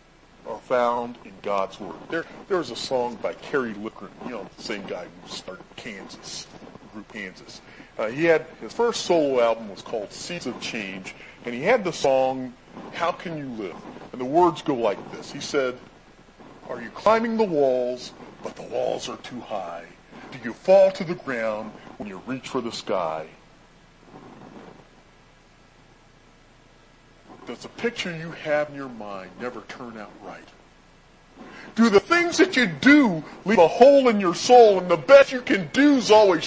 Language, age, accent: English, 40-59, American